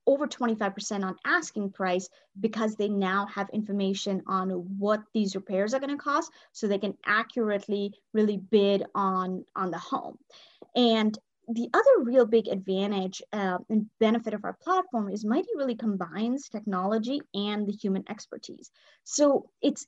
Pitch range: 200-235 Hz